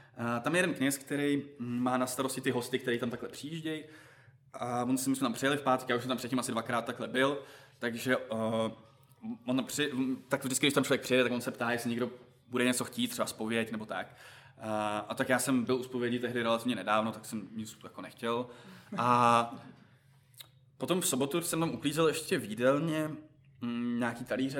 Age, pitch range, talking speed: 20-39, 120-140 Hz, 205 wpm